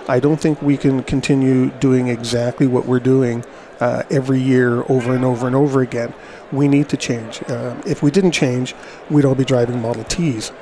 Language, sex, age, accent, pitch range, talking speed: English, male, 40-59, American, 125-145 Hz, 220 wpm